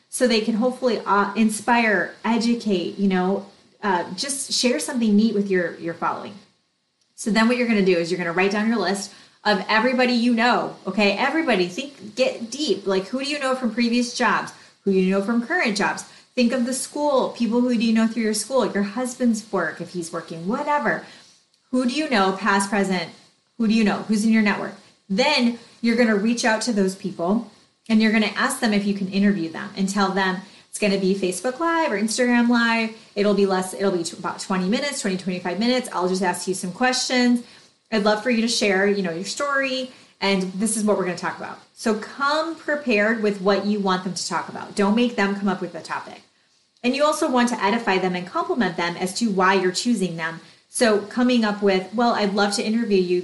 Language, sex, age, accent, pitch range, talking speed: English, female, 30-49, American, 190-245 Hz, 225 wpm